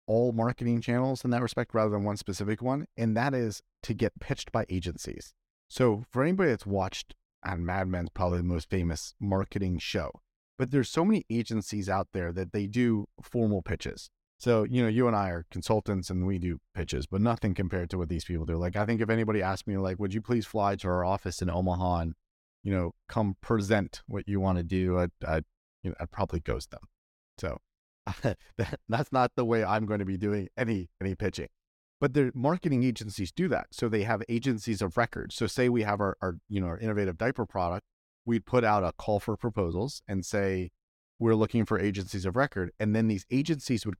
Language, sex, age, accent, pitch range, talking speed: English, male, 30-49, American, 90-115 Hz, 215 wpm